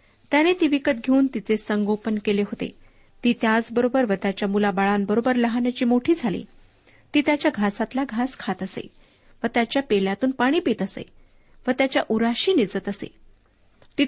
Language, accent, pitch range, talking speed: Marathi, native, 205-250 Hz, 145 wpm